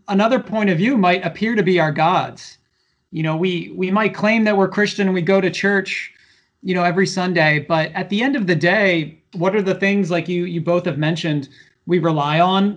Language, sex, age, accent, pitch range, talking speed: English, male, 30-49, American, 155-190 Hz, 225 wpm